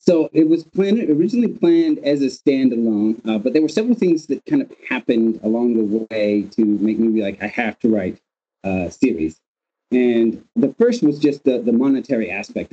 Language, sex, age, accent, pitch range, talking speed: English, male, 30-49, American, 105-135 Hz, 200 wpm